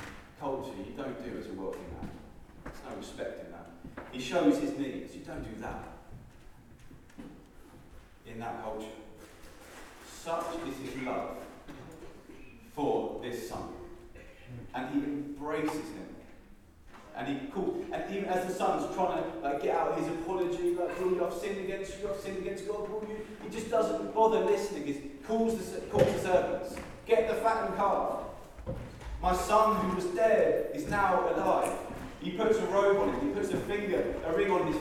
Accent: British